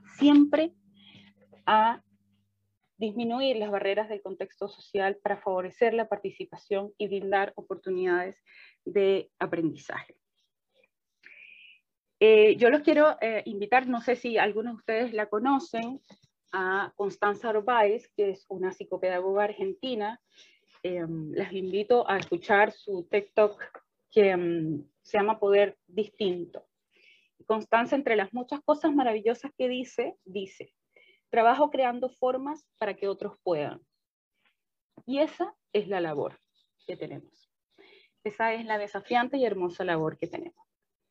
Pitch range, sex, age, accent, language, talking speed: 190-250 Hz, female, 20-39, Venezuelan, Spanish, 125 wpm